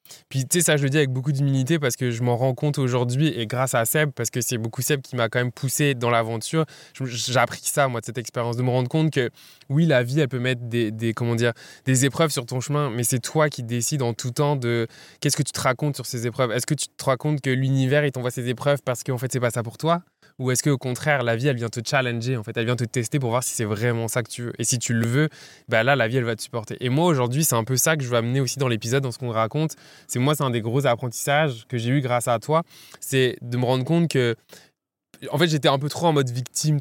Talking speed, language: 295 wpm, French